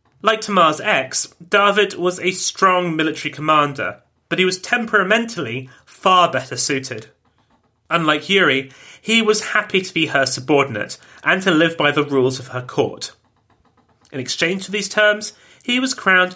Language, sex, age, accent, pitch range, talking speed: English, male, 30-49, British, 135-190 Hz, 155 wpm